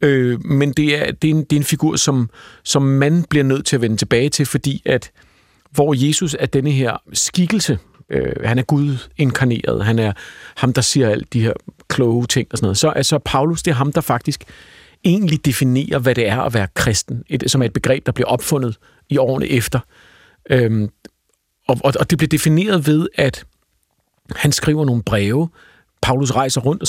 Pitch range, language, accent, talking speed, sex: 120-150 Hz, Danish, native, 205 wpm, male